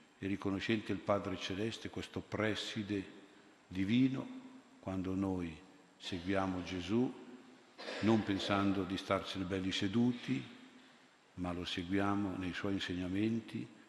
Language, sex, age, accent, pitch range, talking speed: Italian, male, 50-69, native, 90-105 Hz, 105 wpm